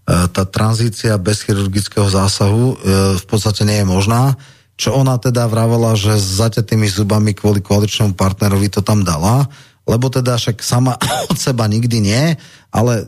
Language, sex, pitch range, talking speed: Slovak, male, 100-120 Hz, 155 wpm